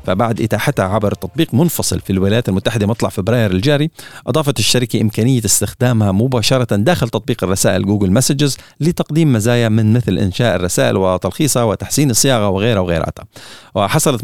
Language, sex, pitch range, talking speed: Arabic, male, 105-140 Hz, 140 wpm